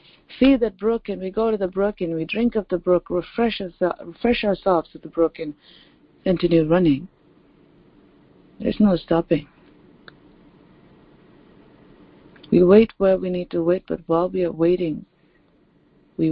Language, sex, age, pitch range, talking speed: English, female, 50-69, 170-220 Hz, 150 wpm